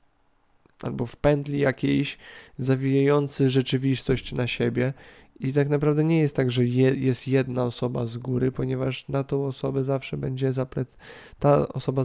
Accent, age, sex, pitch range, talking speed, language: native, 20-39, male, 125-145 Hz, 140 wpm, Polish